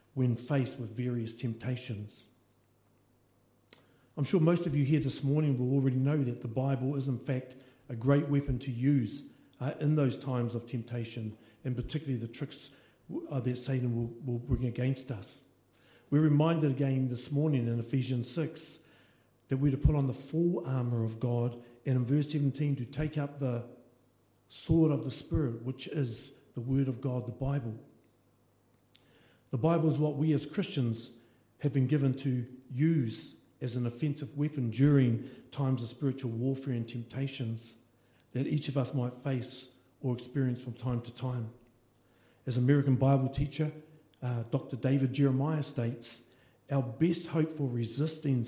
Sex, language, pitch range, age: male, English, 120-140 Hz, 50-69